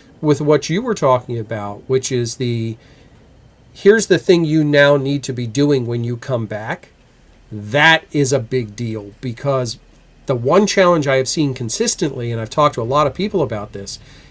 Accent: American